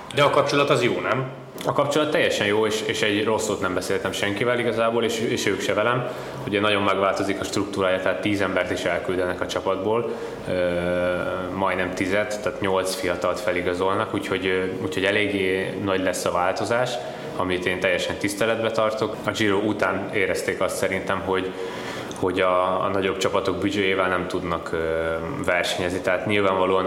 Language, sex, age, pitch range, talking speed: Hungarian, male, 20-39, 90-100 Hz, 160 wpm